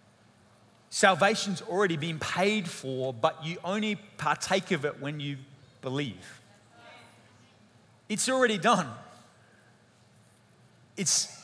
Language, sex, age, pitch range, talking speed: English, male, 30-49, 130-190 Hz, 95 wpm